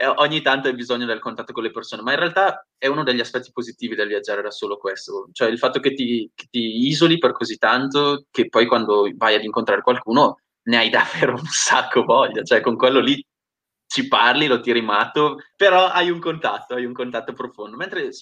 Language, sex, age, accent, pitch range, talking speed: Italian, male, 20-39, native, 115-185 Hz, 210 wpm